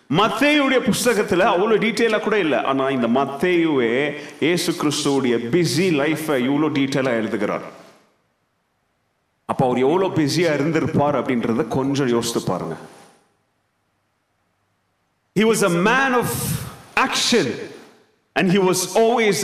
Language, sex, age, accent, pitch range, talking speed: Tamil, male, 40-59, native, 160-260 Hz, 40 wpm